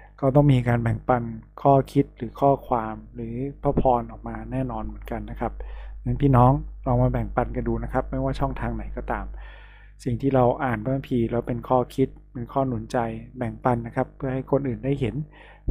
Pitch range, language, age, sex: 115-135 Hz, Thai, 20-39, male